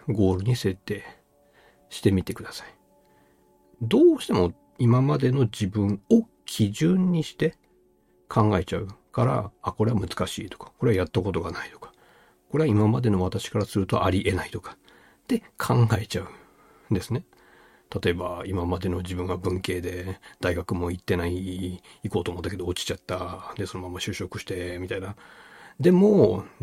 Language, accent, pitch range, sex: Japanese, native, 90-115 Hz, male